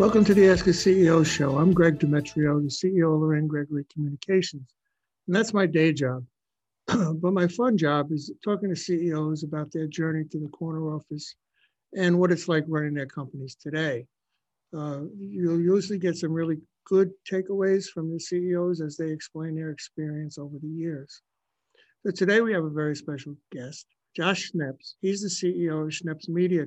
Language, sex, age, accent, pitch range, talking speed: English, male, 60-79, American, 150-180 Hz, 180 wpm